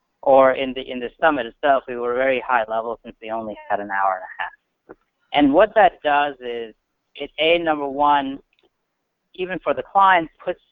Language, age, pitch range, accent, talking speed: English, 50-69, 115-145 Hz, American, 195 wpm